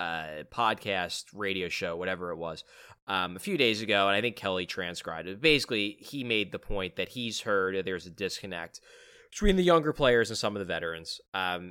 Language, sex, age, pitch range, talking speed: English, male, 20-39, 95-150 Hz, 205 wpm